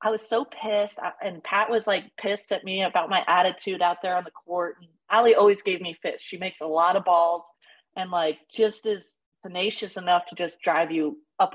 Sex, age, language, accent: female, 30-49, English, American